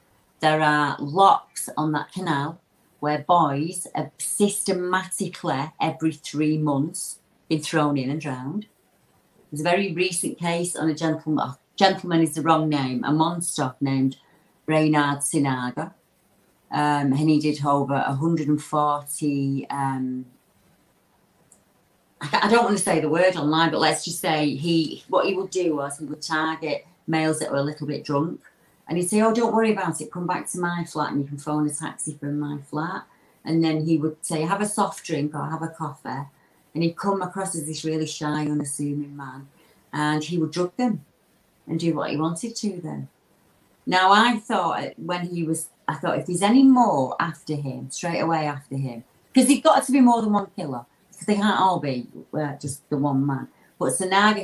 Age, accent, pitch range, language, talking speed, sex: 40-59, British, 145-180 Hz, English, 185 wpm, female